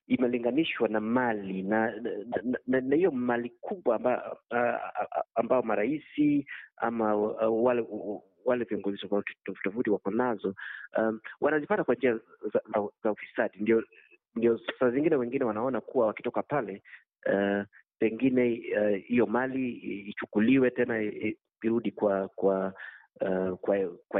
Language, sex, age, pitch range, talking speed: Swahili, male, 30-49, 105-130 Hz, 140 wpm